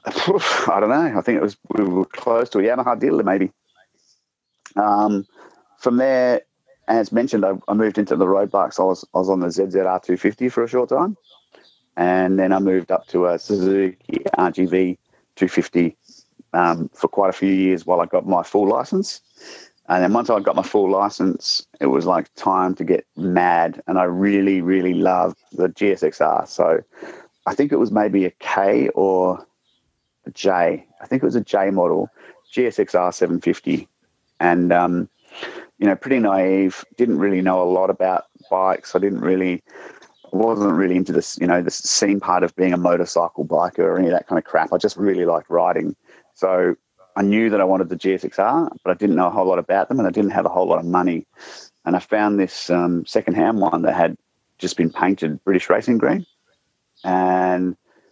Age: 40-59